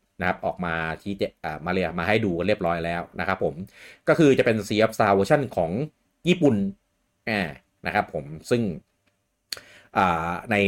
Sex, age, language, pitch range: male, 30-49, Thai, 90-110 Hz